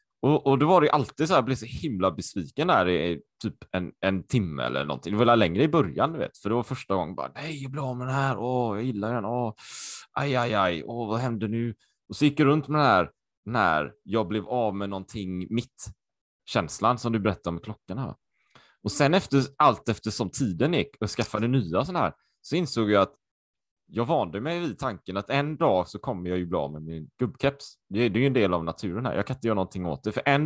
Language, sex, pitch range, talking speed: Swedish, male, 100-130 Hz, 245 wpm